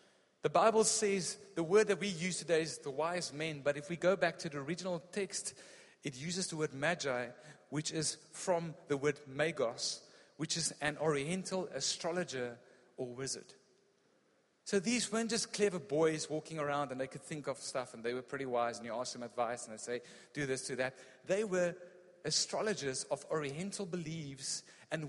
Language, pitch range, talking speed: English, 135-175 Hz, 185 wpm